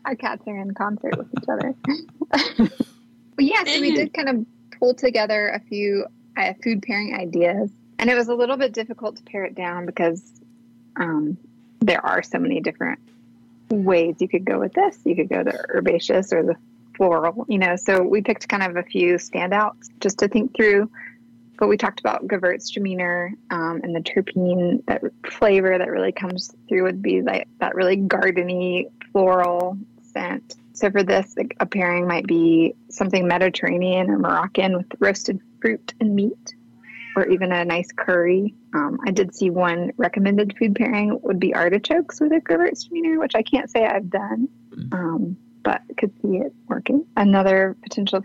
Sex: female